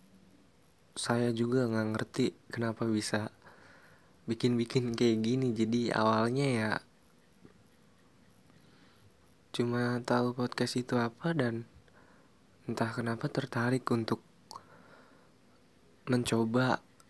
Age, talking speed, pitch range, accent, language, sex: 20-39, 80 wpm, 115-125 Hz, Indonesian, English, male